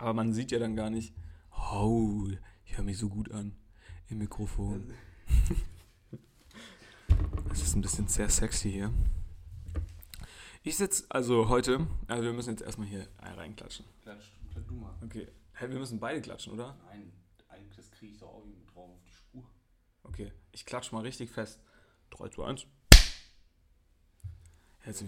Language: German